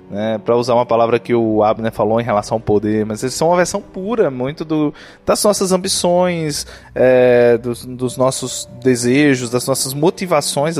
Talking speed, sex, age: 165 wpm, male, 20-39